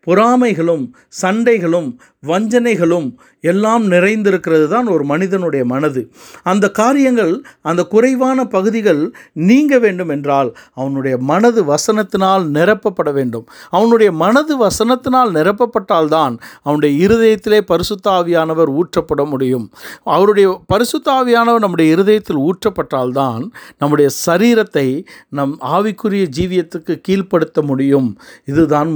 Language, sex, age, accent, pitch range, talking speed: Tamil, male, 60-79, native, 150-215 Hz, 90 wpm